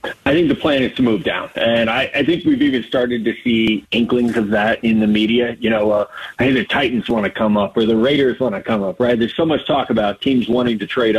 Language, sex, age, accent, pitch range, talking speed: English, male, 40-59, American, 115-140 Hz, 275 wpm